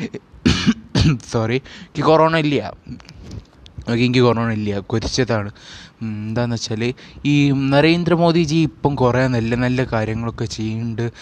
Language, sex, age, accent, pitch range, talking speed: Malayalam, male, 20-39, native, 115-145 Hz, 90 wpm